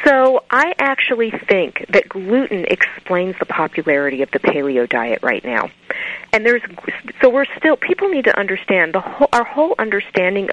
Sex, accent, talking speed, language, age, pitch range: female, American, 175 wpm, English, 40-59, 165-245 Hz